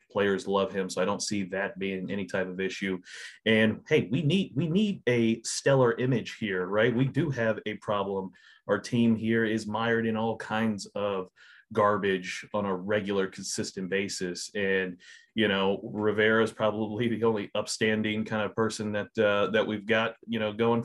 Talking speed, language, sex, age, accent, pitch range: 185 wpm, English, male, 30-49, American, 100-115 Hz